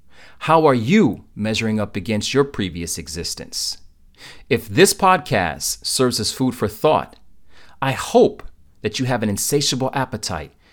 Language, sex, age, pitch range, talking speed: English, male, 40-59, 85-130 Hz, 140 wpm